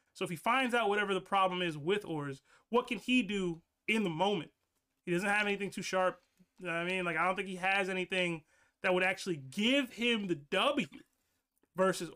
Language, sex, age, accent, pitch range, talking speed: English, male, 20-39, American, 175-215 Hz, 215 wpm